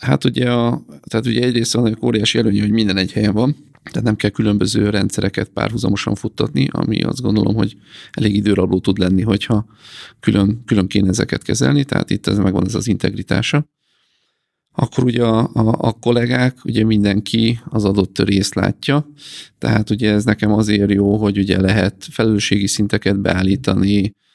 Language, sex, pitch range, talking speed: Hungarian, male, 95-115 Hz, 165 wpm